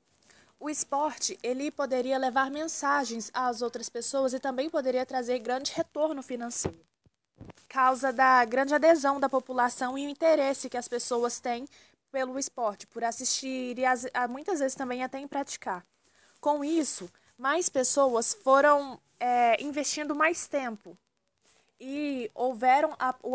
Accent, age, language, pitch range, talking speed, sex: Brazilian, 20-39, Portuguese, 240-285 Hz, 135 wpm, female